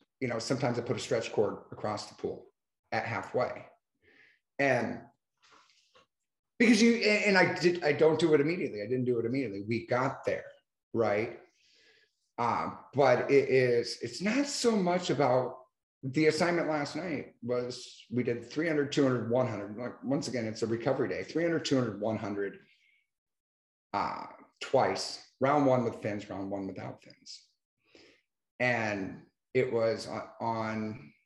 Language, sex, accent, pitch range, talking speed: English, male, American, 120-155 Hz, 145 wpm